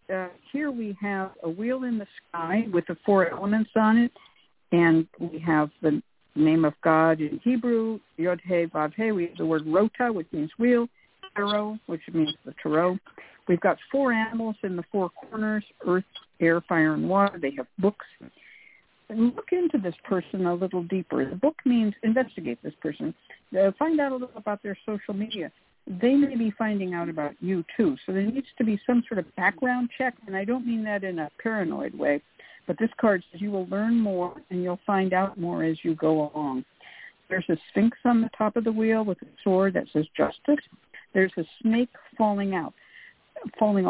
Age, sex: 60-79, female